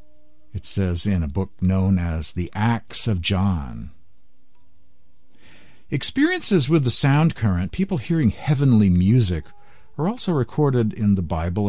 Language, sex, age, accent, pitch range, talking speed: English, male, 50-69, American, 85-130 Hz, 135 wpm